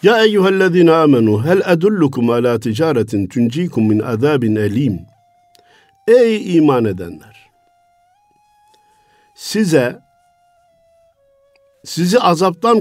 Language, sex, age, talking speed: Turkish, male, 50-69, 80 wpm